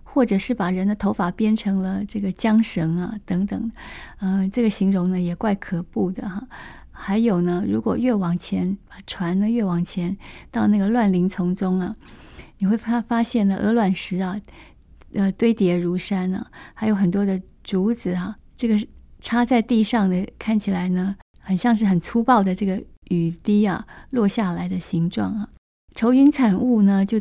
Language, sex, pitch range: Chinese, female, 185-220 Hz